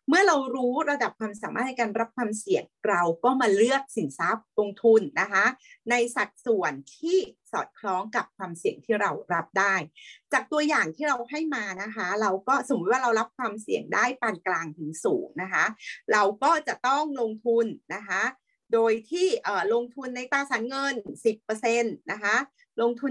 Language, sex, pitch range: English, female, 210-265 Hz